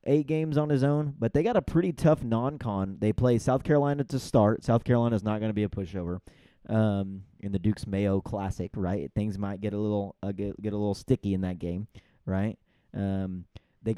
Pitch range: 100-115 Hz